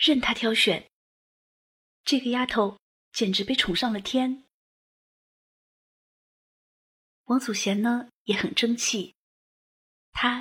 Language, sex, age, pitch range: Chinese, female, 30-49, 195-240 Hz